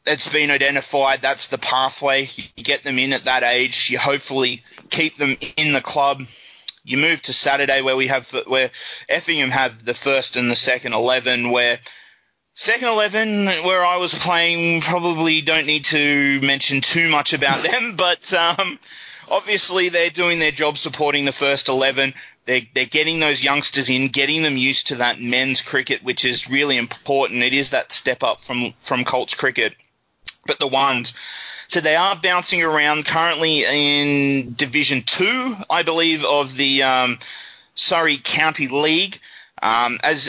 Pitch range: 130-155 Hz